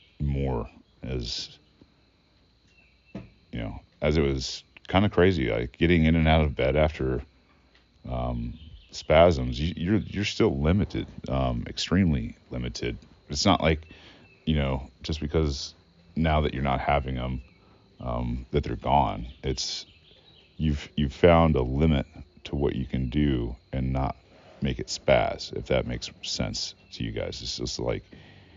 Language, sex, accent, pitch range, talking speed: English, male, American, 65-85 Hz, 145 wpm